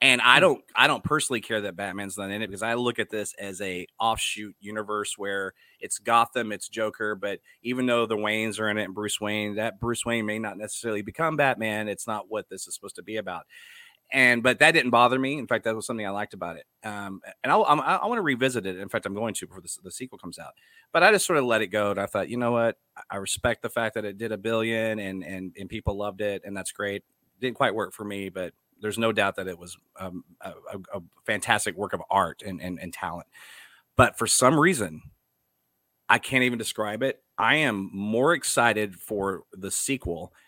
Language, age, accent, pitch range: English, 30-49, American, 100-120 Hz